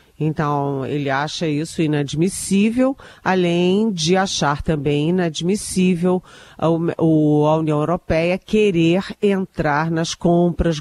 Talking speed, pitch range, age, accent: 95 wpm, 155-195 Hz, 40-59, Brazilian